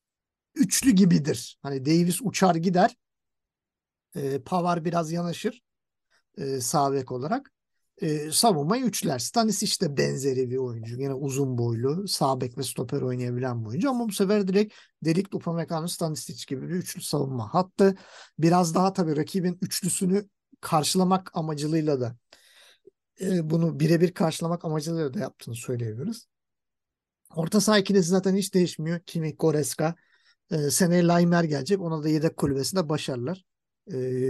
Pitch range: 140-185 Hz